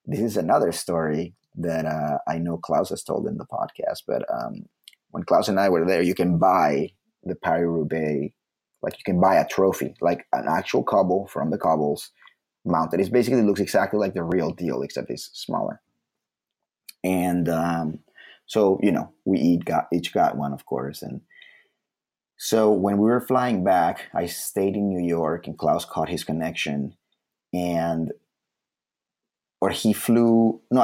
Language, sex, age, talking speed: English, male, 30-49, 165 wpm